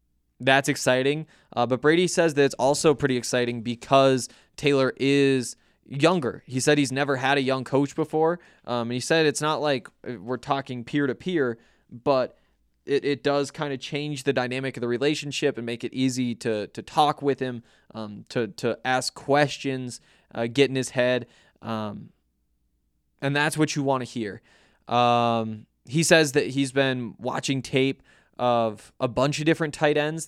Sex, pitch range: male, 120-140 Hz